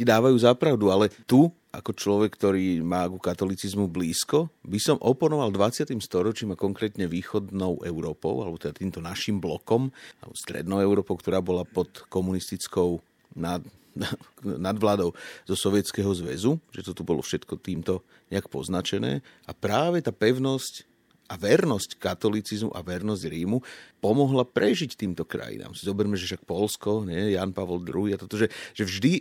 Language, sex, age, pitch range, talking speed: Slovak, male, 40-59, 95-120 Hz, 150 wpm